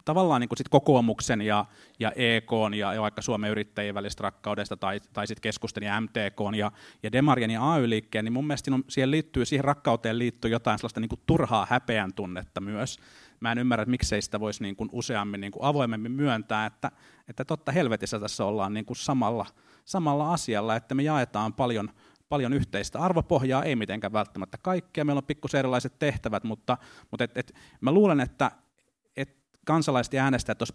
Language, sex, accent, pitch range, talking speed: Finnish, male, native, 105-135 Hz, 175 wpm